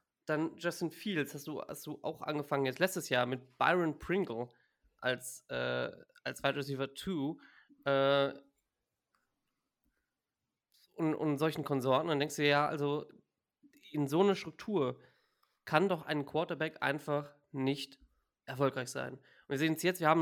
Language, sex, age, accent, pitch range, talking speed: German, male, 20-39, German, 135-155 Hz, 155 wpm